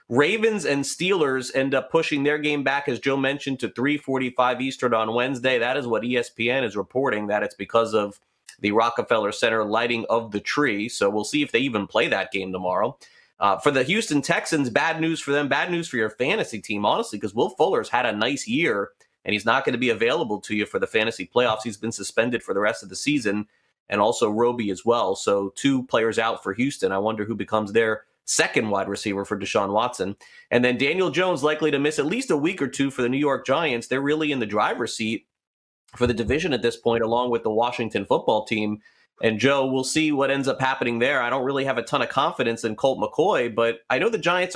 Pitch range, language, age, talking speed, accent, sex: 110-140 Hz, English, 30-49, 230 wpm, American, male